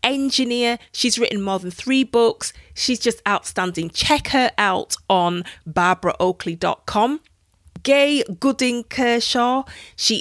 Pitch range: 180-245 Hz